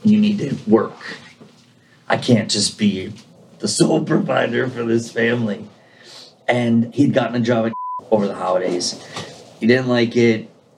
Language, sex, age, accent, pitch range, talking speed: English, male, 30-49, American, 115-145 Hz, 150 wpm